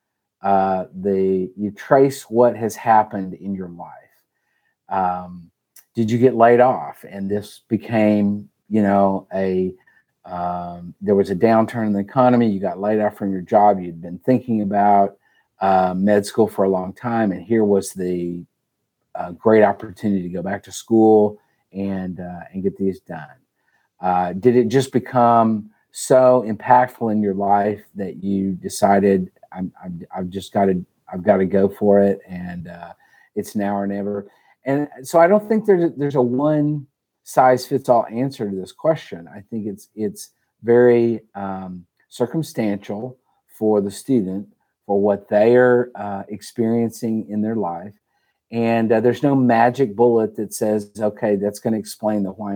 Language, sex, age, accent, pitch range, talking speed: English, male, 40-59, American, 100-115 Hz, 165 wpm